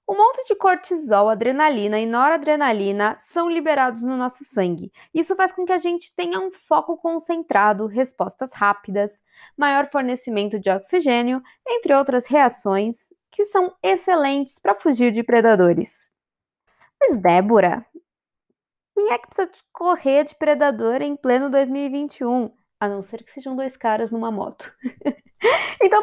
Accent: Brazilian